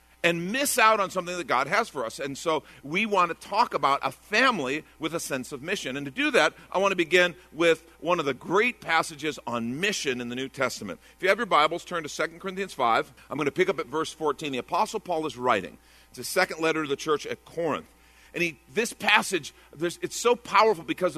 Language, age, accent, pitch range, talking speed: English, 50-69, American, 130-185 Hz, 235 wpm